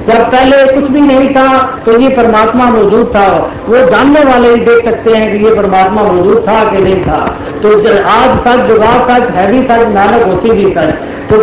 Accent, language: native, Hindi